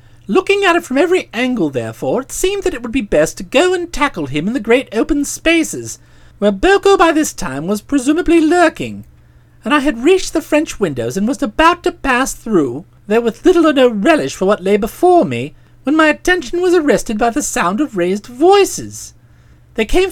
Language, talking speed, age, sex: English, 205 wpm, 40-59, male